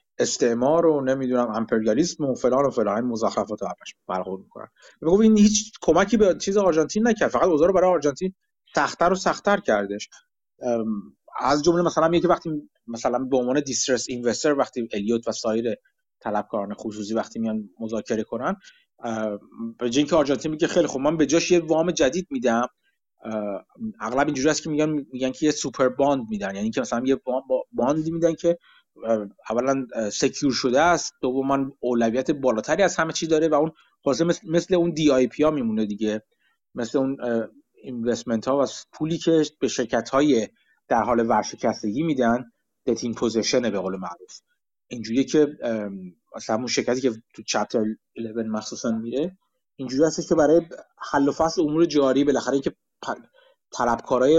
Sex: male